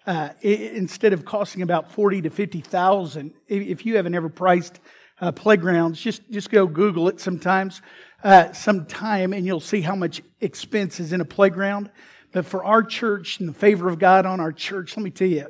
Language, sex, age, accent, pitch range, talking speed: English, male, 50-69, American, 180-205 Hz, 200 wpm